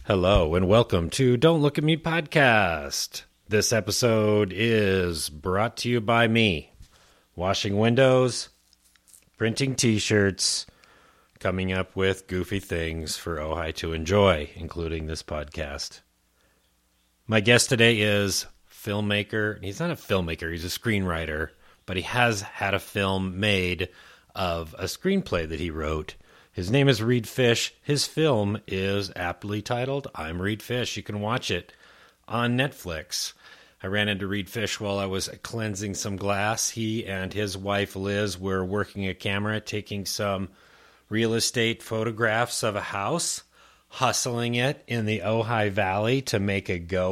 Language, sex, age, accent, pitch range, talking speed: English, male, 30-49, American, 95-115 Hz, 145 wpm